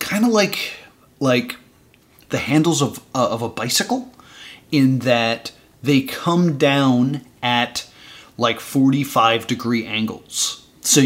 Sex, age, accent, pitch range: male, 30-49, American, 115-140 Hz